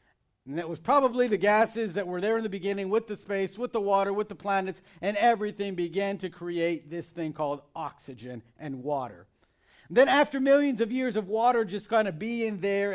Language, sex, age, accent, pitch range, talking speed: English, male, 40-59, American, 170-225 Hz, 205 wpm